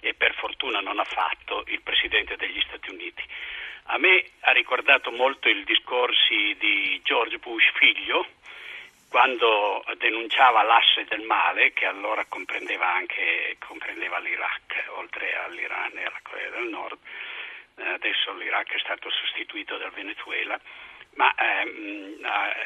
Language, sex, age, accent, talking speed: Italian, male, 50-69, native, 130 wpm